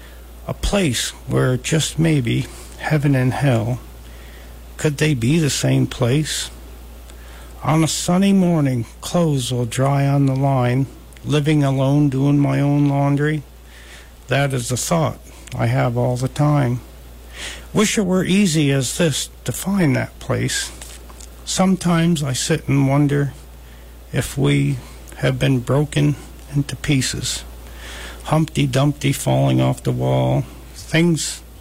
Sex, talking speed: male, 130 wpm